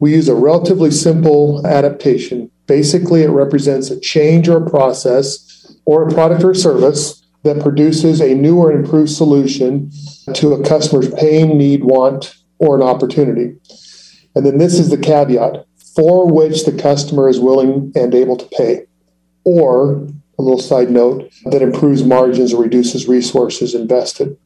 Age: 40-59